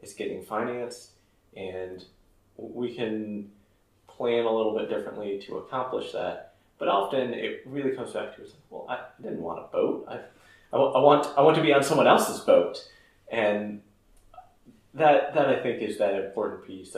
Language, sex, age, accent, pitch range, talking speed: English, male, 30-49, American, 100-115 Hz, 170 wpm